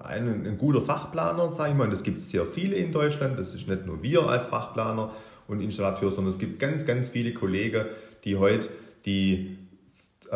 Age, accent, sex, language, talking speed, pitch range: 40-59, German, male, German, 205 wpm, 95-125 Hz